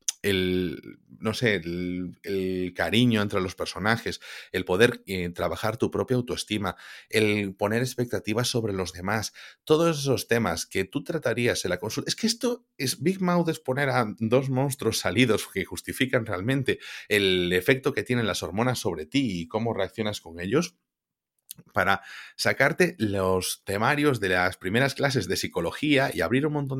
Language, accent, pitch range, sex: Spanish, Spanish, 95-130 Hz, male